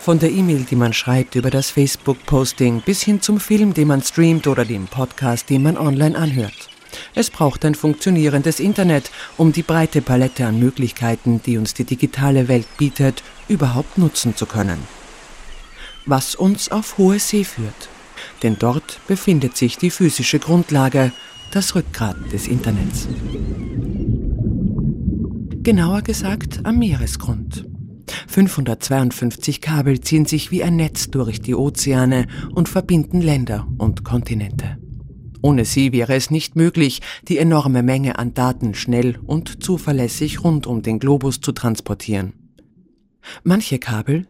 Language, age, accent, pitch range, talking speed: German, 50-69, German, 120-160 Hz, 140 wpm